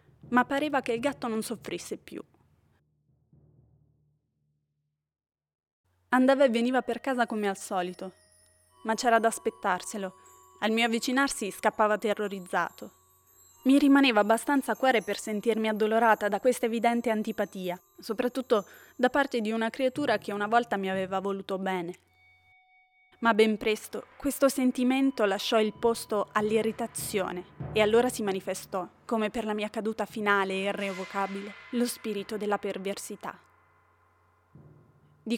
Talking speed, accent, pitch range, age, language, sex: 125 wpm, native, 190-235 Hz, 20-39, Italian, female